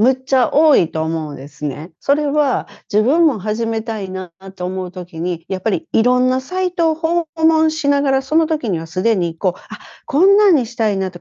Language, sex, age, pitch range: Japanese, female, 40-59, 165-265 Hz